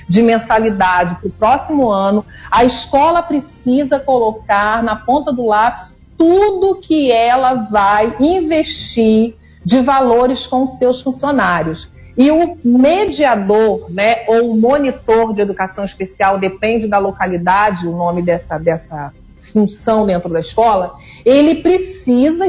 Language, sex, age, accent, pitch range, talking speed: Portuguese, female, 40-59, Brazilian, 215-300 Hz, 125 wpm